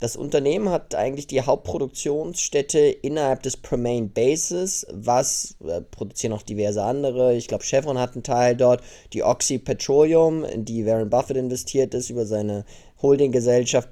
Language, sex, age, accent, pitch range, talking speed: German, male, 20-39, German, 115-135 Hz, 150 wpm